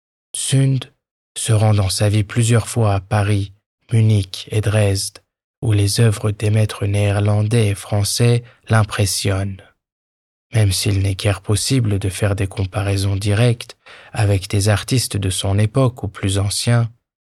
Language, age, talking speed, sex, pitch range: German, 20-39, 145 wpm, male, 100-115 Hz